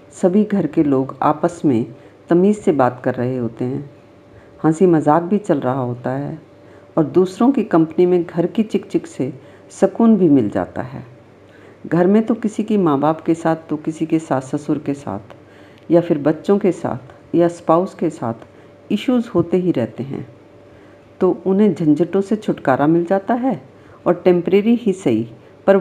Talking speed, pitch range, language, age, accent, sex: 180 wpm, 140-185 Hz, Hindi, 50-69, native, female